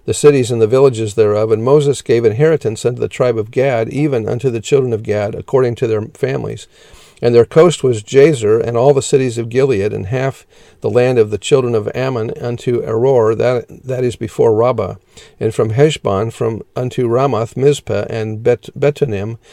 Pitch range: 110-135 Hz